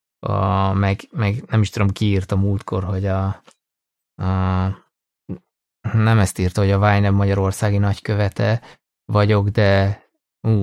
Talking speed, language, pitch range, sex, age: 135 wpm, Hungarian, 100-110 Hz, male, 20-39